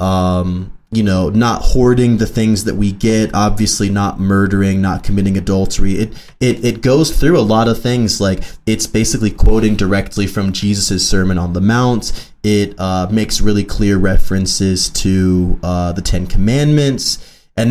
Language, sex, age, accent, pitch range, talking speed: English, male, 20-39, American, 95-110 Hz, 160 wpm